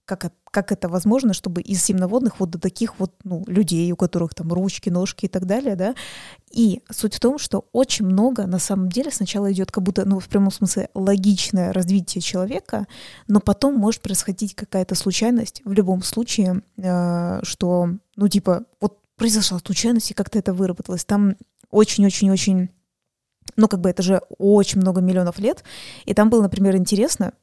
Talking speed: 175 wpm